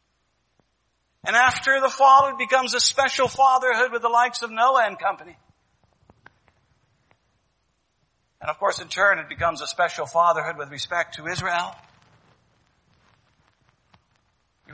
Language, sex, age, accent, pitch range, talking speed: English, male, 60-79, American, 160-260 Hz, 125 wpm